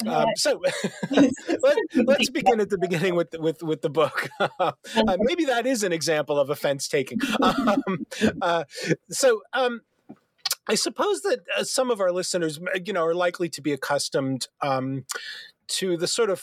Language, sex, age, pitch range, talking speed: English, male, 30-49, 135-210 Hz, 170 wpm